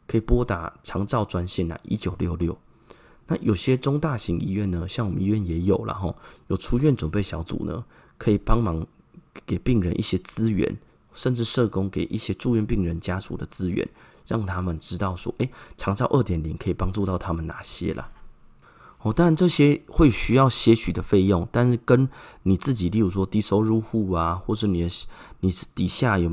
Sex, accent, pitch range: male, native, 90-120 Hz